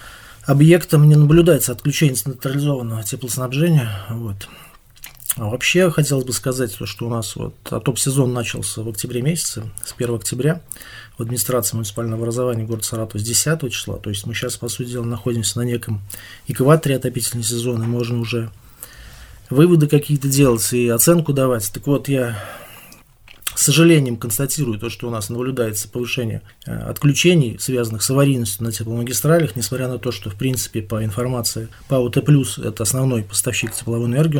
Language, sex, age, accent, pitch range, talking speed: Russian, male, 20-39, native, 115-140 Hz, 155 wpm